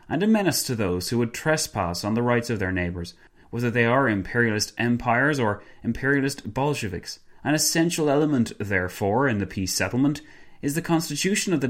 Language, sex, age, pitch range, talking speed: English, male, 30-49, 100-135 Hz, 180 wpm